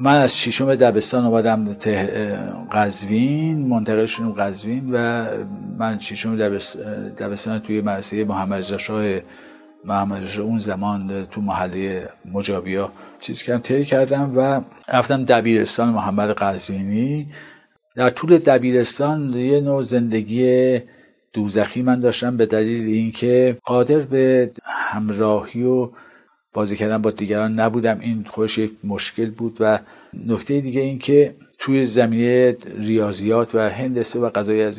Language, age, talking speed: Persian, 50-69, 125 wpm